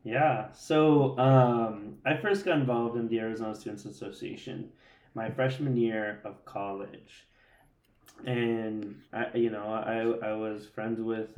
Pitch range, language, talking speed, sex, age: 110-125 Hz, English, 135 wpm, male, 20-39